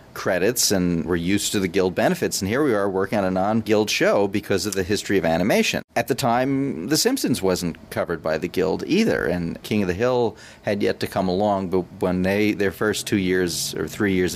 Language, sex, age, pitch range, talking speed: English, male, 40-59, 90-105 Hz, 225 wpm